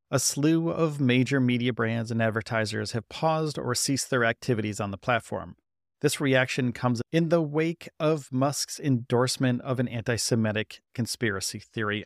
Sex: male